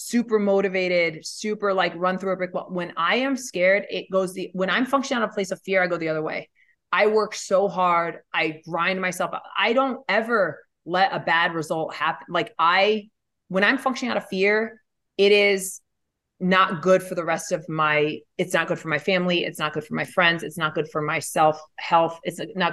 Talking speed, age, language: 215 wpm, 30-49, English